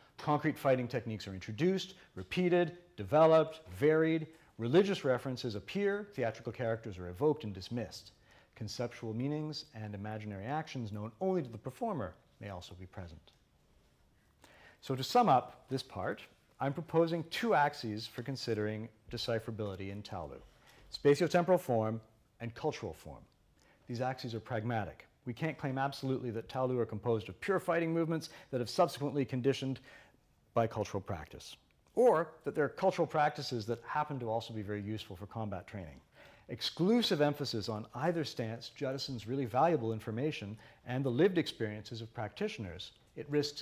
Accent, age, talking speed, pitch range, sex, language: American, 40-59, 145 wpm, 110-150 Hz, male, English